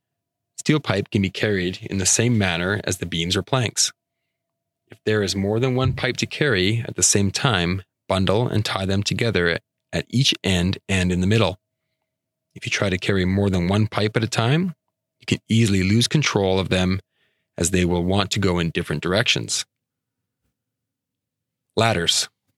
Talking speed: 180 wpm